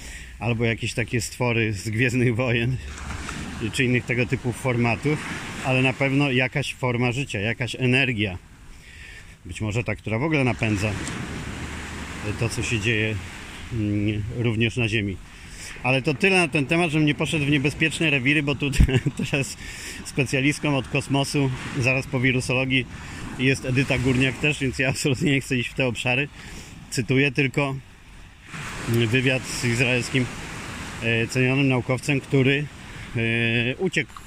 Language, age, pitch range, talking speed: Polish, 40-59, 110-135 Hz, 135 wpm